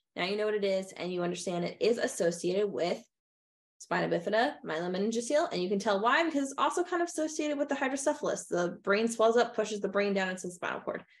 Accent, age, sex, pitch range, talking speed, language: American, 20-39, female, 175-235 Hz, 225 wpm, English